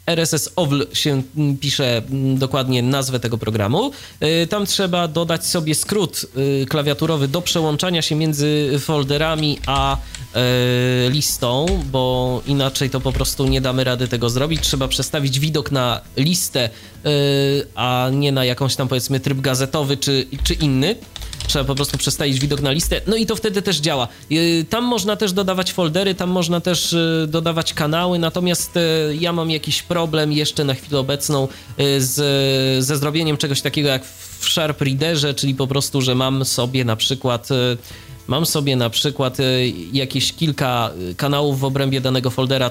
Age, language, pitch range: 20-39, Polish, 125-155 Hz